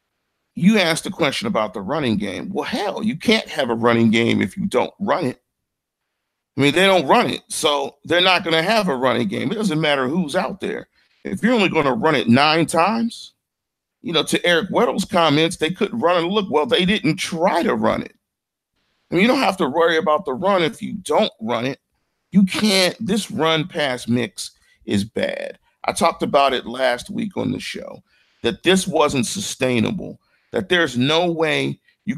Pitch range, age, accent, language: 150-205 Hz, 40-59, American, English